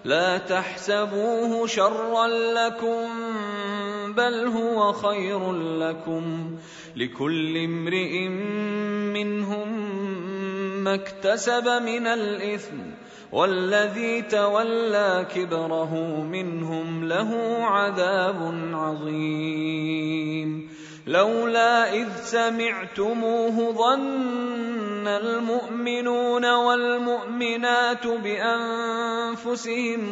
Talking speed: 60 wpm